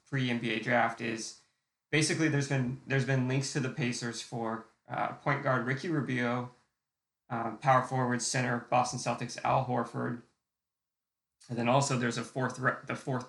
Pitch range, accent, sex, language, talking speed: 115-130 Hz, American, male, English, 155 wpm